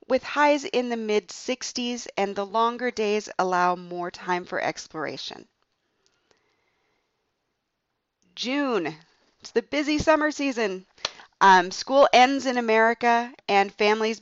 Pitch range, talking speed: 195-250 Hz, 115 wpm